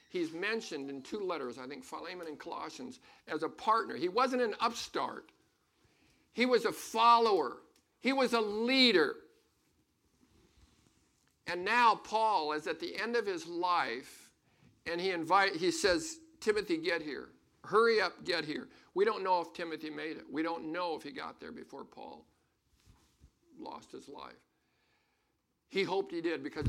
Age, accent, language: 50-69, American, English